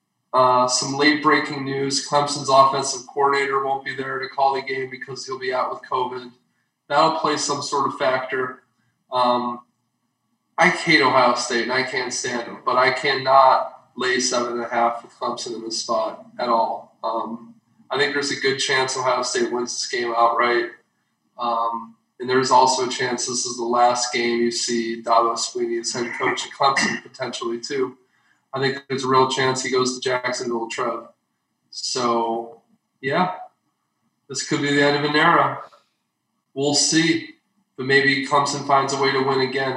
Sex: male